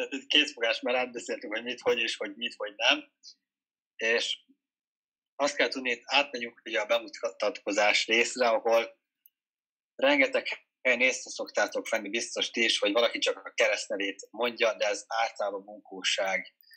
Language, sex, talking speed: Hungarian, male, 145 wpm